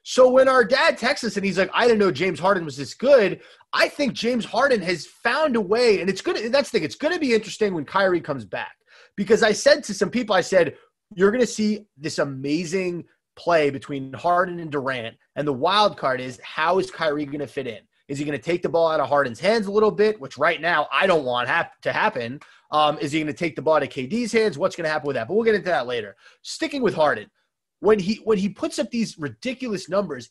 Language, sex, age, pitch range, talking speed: English, male, 30-49, 170-230 Hz, 255 wpm